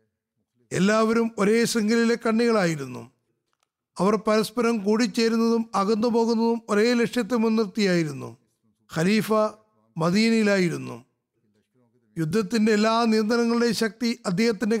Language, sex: Malayalam, male